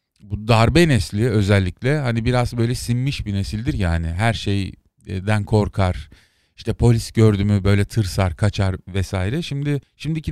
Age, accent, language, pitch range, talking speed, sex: 40-59, native, Turkish, 100-130 Hz, 135 wpm, male